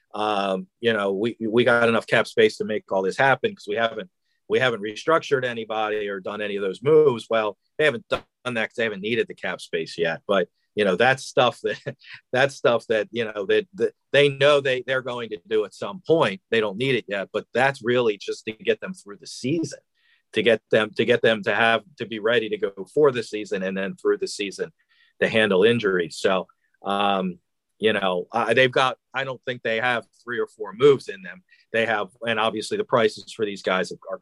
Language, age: English, 40-59